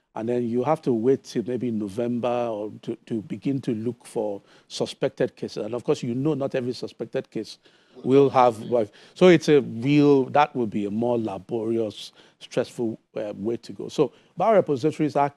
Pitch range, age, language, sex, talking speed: 110-130 Hz, 50-69, English, male, 185 wpm